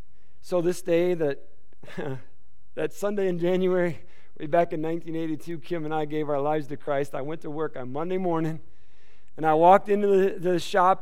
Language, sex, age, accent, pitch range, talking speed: English, male, 50-69, American, 170-225 Hz, 185 wpm